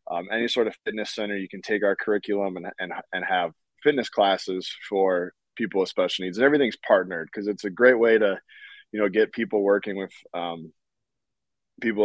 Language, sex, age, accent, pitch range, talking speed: English, male, 20-39, American, 90-105 Hz, 195 wpm